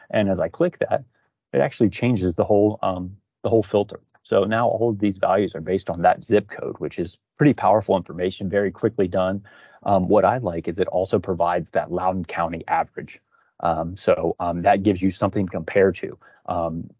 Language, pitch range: English, 90-105 Hz